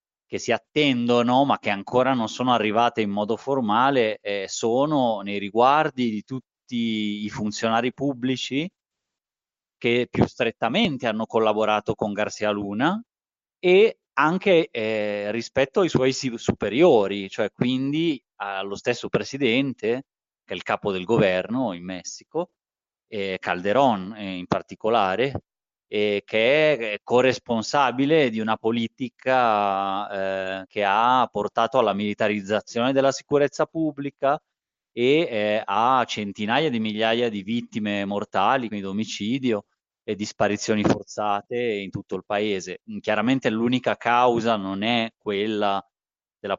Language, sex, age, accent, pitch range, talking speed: Italian, male, 30-49, native, 100-130 Hz, 120 wpm